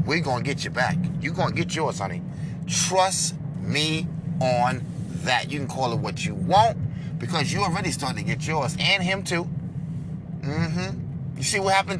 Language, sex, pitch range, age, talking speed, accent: English, male, 140-165 Hz, 30-49, 190 wpm, American